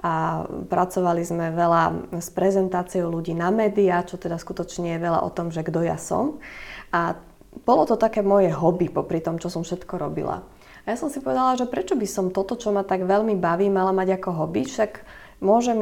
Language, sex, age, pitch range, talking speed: Slovak, female, 20-39, 175-205 Hz, 200 wpm